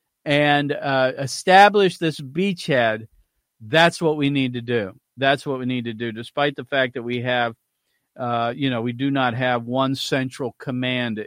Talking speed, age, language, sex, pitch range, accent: 175 wpm, 50-69, English, male, 135-185 Hz, American